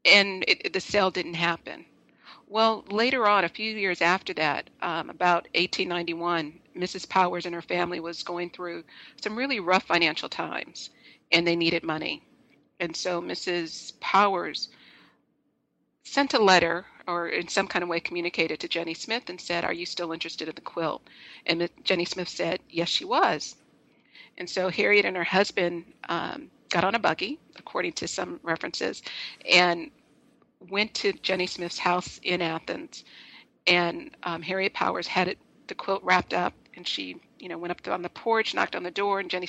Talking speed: 175 wpm